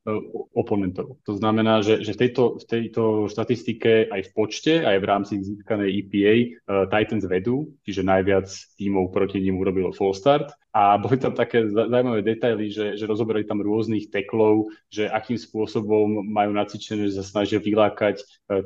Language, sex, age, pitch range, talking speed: Slovak, male, 20-39, 100-110 Hz, 160 wpm